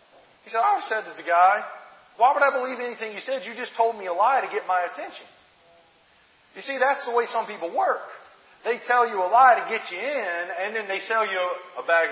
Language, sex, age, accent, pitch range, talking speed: English, male, 40-59, American, 180-290 Hz, 240 wpm